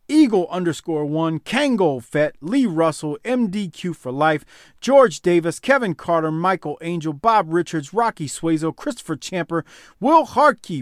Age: 40-59